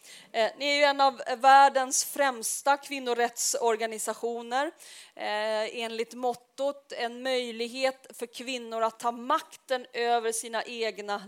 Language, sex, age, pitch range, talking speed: Swedish, female, 30-49, 220-270 Hz, 115 wpm